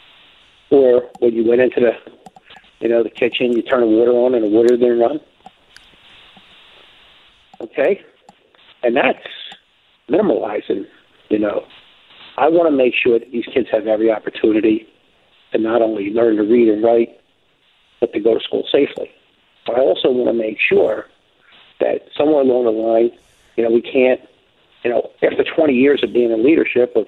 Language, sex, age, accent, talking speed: English, male, 50-69, American, 175 wpm